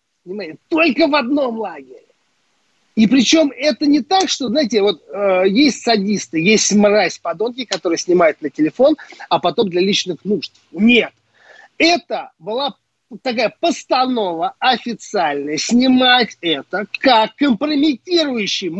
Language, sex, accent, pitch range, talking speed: Russian, male, native, 185-270 Hz, 115 wpm